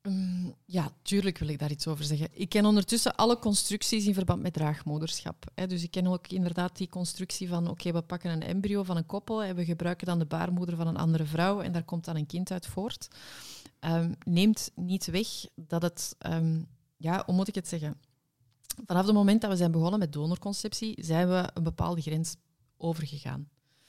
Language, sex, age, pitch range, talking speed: Dutch, female, 30-49, 160-195 Hz, 200 wpm